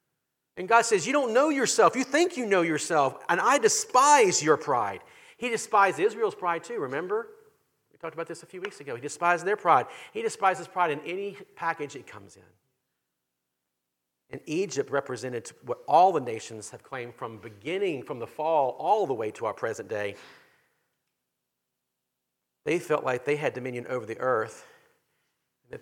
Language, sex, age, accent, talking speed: English, male, 50-69, American, 175 wpm